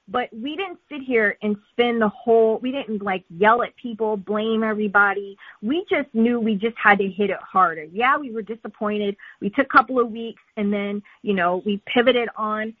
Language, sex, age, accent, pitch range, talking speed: English, female, 30-49, American, 195-235 Hz, 205 wpm